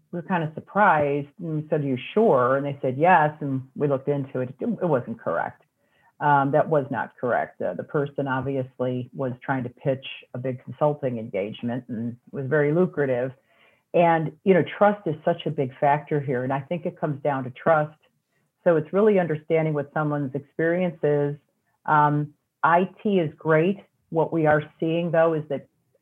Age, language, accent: 50-69, English, American